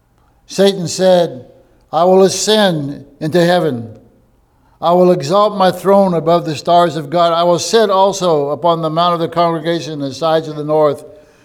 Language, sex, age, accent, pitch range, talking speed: English, male, 60-79, American, 150-190 Hz, 175 wpm